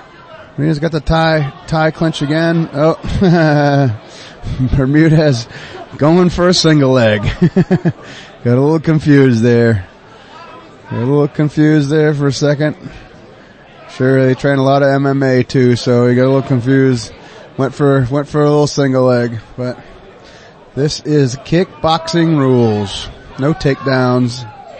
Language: English